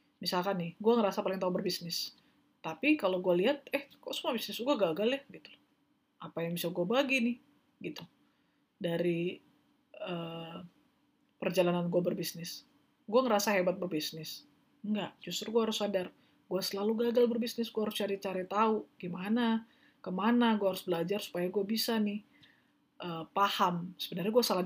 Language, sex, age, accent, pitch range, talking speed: Indonesian, female, 20-39, native, 175-225 Hz, 150 wpm